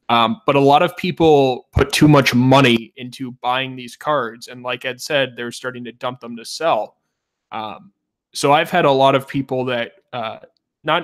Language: English